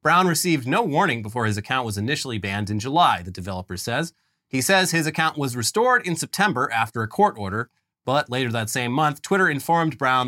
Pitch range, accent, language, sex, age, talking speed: 110-150 Hz, American, English, male, 30-49, 205 wpm